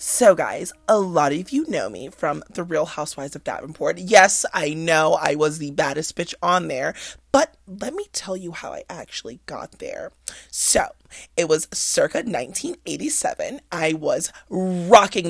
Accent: American